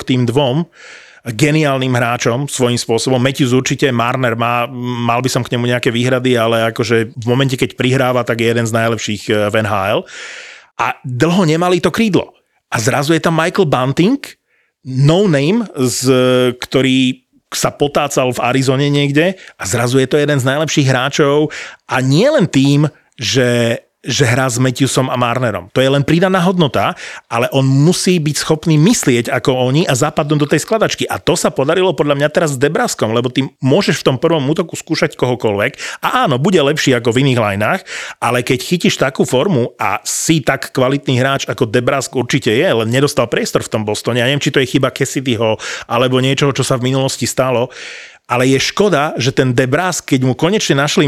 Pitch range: 125-150 Hz